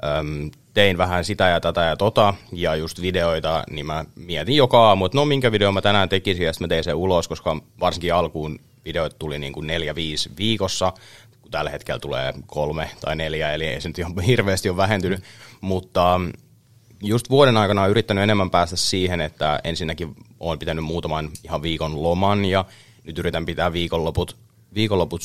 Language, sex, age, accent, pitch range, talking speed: Finnish, male, 30-49, native, 85-110 Hz, 170 wpm